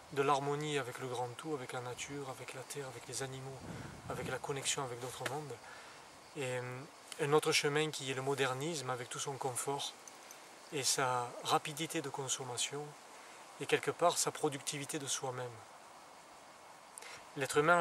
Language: French